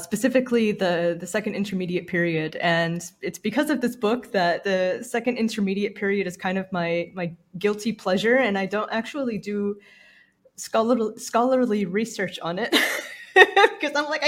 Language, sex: English, female